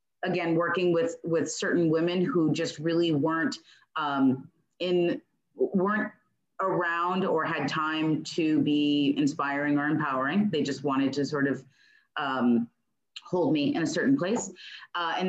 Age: 30-49